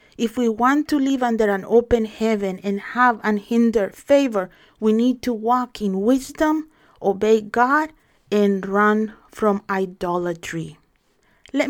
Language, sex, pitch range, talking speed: English, female, 210-270 Hz, 135 wpm